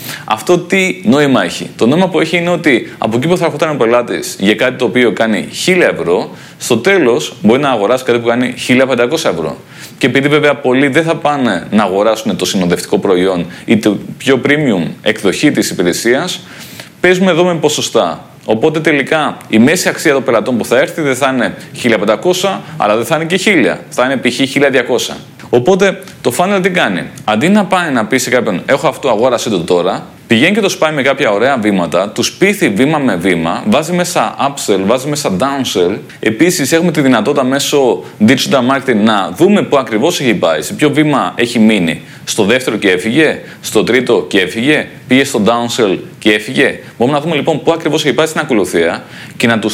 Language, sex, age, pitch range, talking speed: Greek, male, 30-49, 110-165 Hz, 195 wpm